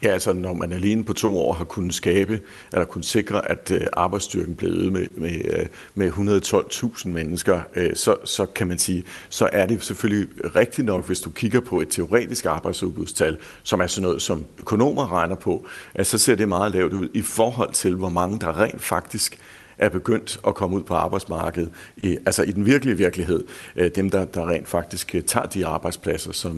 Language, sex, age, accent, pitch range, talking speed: Danish, male, 60-79, native, 90-110 Hz, 185 wpm